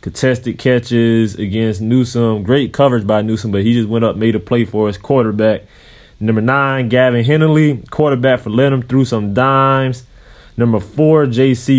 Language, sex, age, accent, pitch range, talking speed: English, male, 20-39, American, 110-135 Hz, 165 wpm